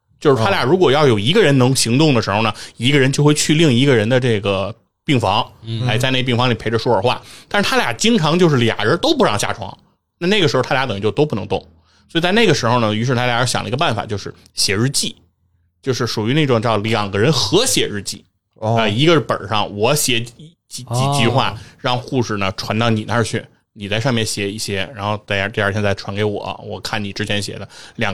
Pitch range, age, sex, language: 100-130 Hz, 20-39, male, Chinese